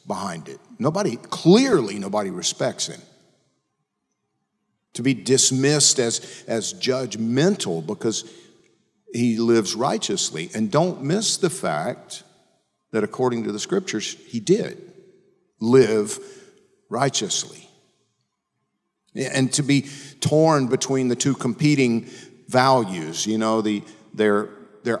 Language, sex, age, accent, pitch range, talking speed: English, male, 50-69, American, 105-155 Hz, 110 wpm